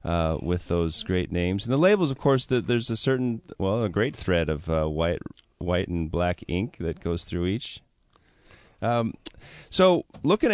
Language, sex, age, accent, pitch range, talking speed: English, male, 30-49, American, 90-120 Hz, 175 wpm